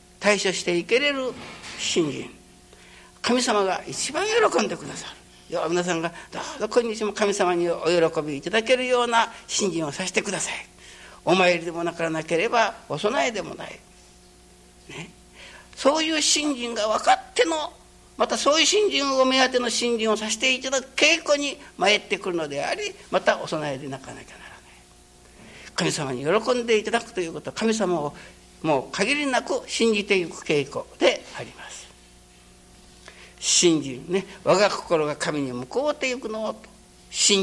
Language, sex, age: Japanese, male, 60-79